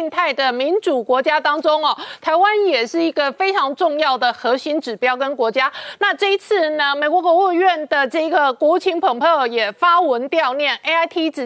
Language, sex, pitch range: Chinese, female, 270-350 Hz